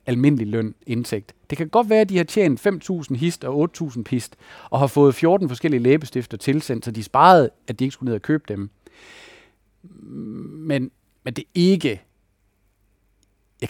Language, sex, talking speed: Danish, male, 170 wpm